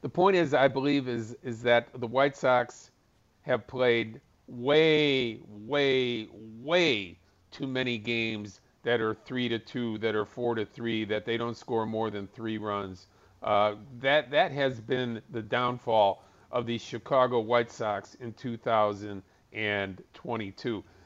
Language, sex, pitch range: English, male, 105-130 Hz